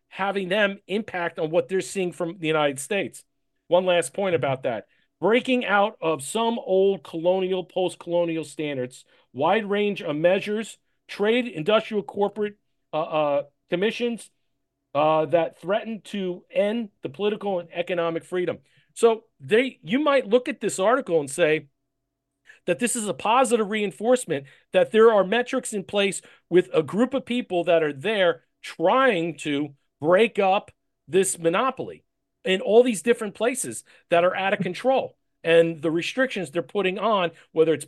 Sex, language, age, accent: male, English, 40-59, American